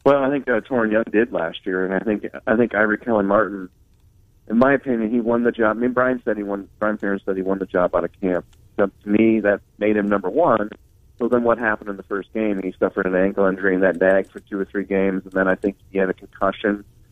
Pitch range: 100-120 Hz